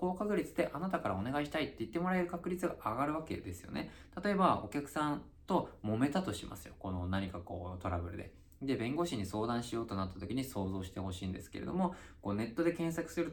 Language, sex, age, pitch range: Japanese, male, 20-39, 95-155 Hz